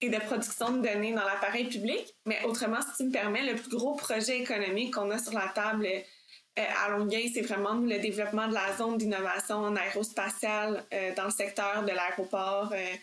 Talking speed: 195 wpm